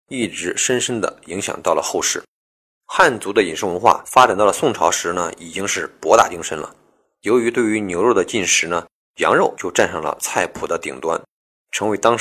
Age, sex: 20-39, male